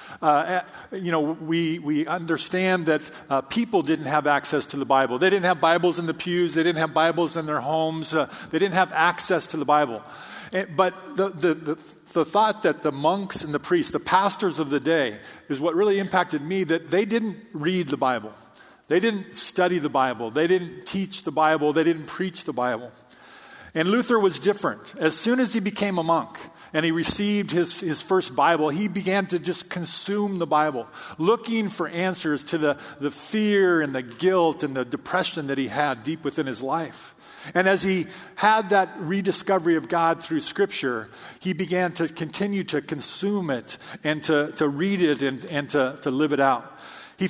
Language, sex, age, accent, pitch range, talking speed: English, male, 40-59, American, 150-185 Hz, 200 wpm